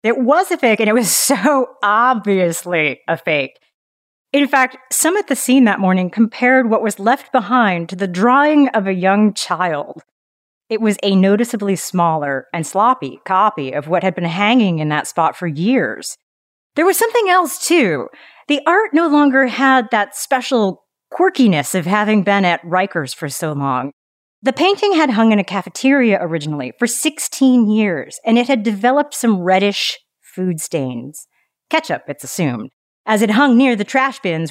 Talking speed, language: 170 wpm, English